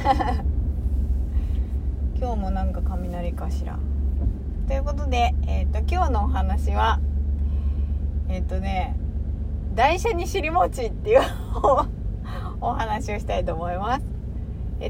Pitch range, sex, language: 70-80 Hz, female, Japanese